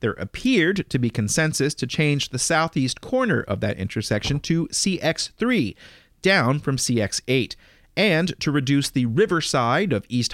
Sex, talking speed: male, 145 wpm